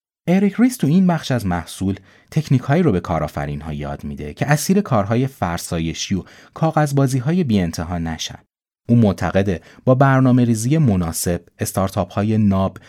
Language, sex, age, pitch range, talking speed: Persian, male, 30-49, 85-120 Hz, 150 wpm